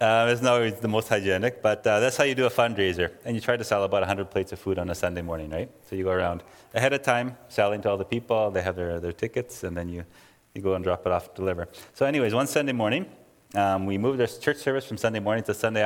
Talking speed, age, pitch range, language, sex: 280 wpm, 30-49, 95-115 Hz, English, male